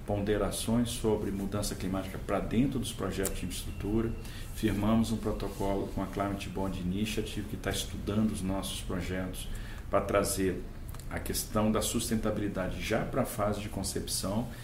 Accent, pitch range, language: Brazilian, 100-115 Hz, Portuguese